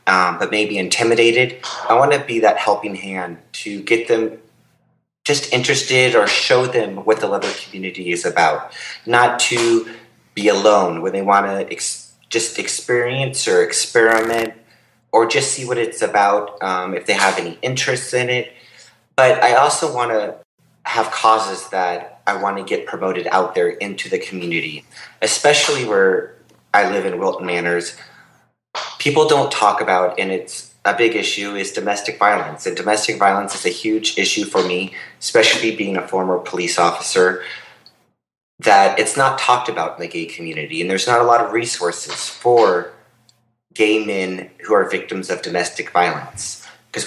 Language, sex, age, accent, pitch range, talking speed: English, male, 30-49, American, 95-125 Hz, 165 wpm